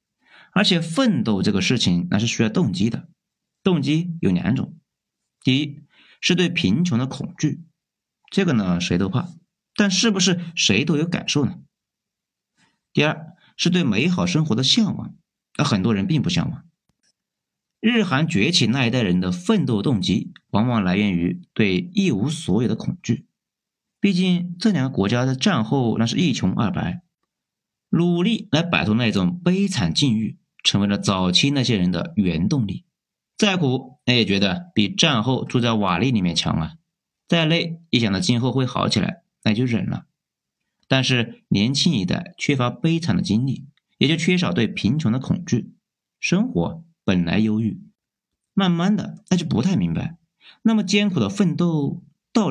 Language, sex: Chinese, male